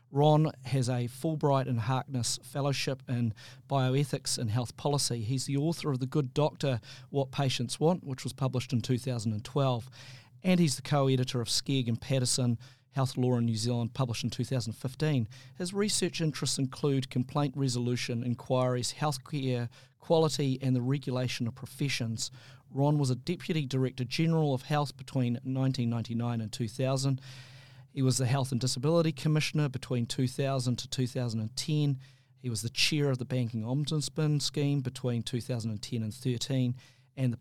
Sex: male